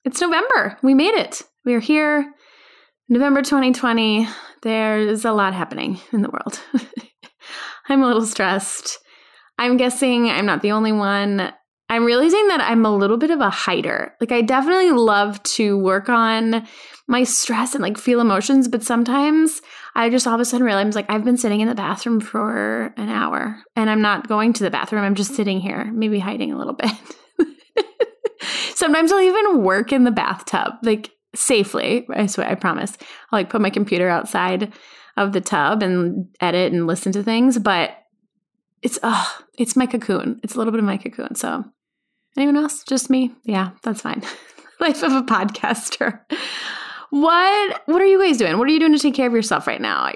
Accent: American